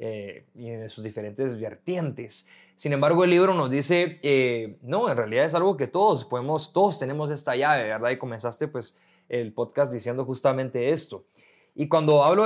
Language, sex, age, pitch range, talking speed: Spanish, male, 20-39, 120-155 Hz, 180 wpm